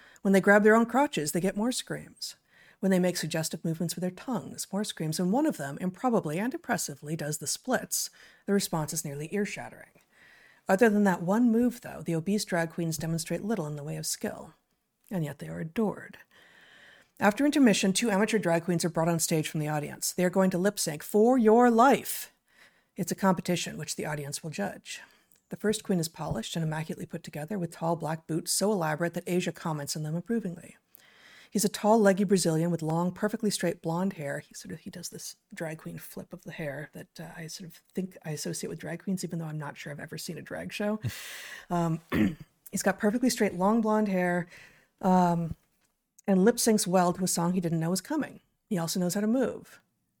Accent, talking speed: American, 215 wpm